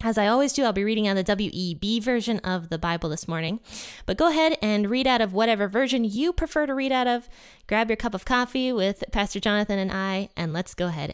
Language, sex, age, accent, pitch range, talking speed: English, female, 20-39, American, 185-245 Hz, 240 wpm